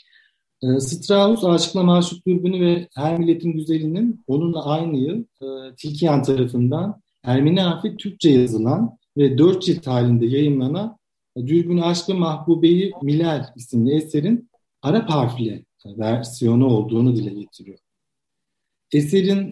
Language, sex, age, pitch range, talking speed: Turkish, male, 50-69, 125-170 Hz, 120 wpm